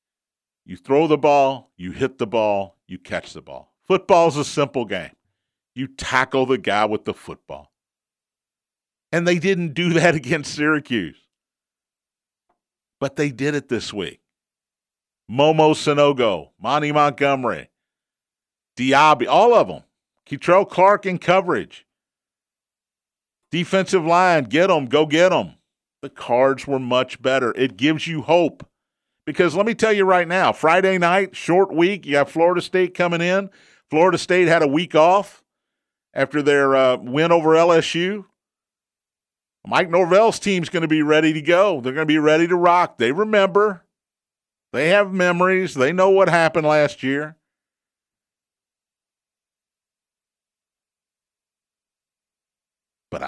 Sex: male